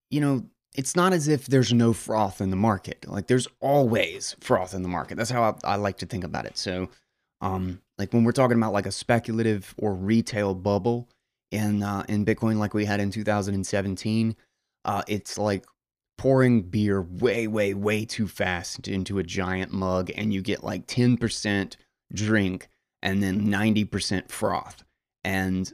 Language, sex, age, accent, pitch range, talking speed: English, male, 20-39, American, 95-115 Hz, 175 wpm